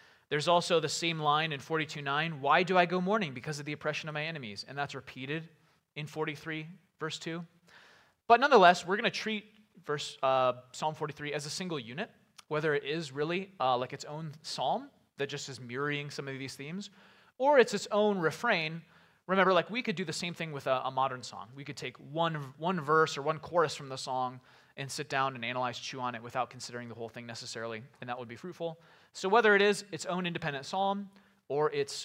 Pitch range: 135-175 Hz